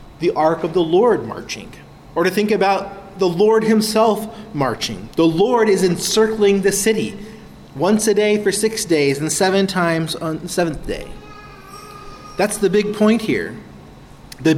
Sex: male